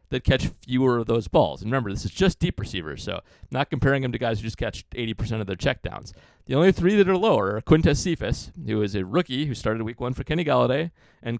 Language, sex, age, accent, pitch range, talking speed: English, male, 40-59, American, 100-135 Hz, 250 wpm